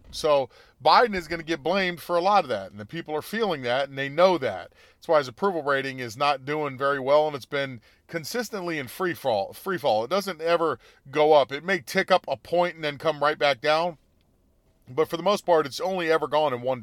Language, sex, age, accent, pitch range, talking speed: English, male, 40-59, American, 110-165 Hz, 245 wpm